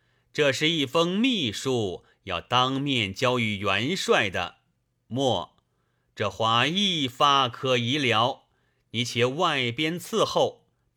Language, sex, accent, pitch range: Chinese, male, native, 110-160 Hz